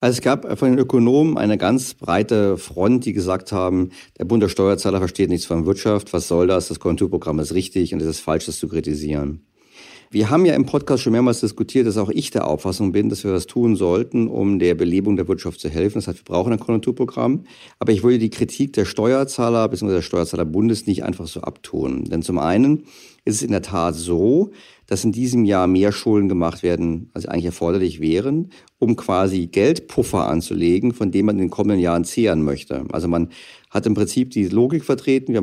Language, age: German, 50-69